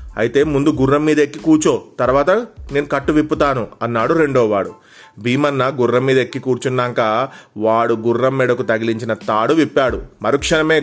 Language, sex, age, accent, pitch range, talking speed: Telugu, male, 30-49, native, 125-150 Hz, 140 wpm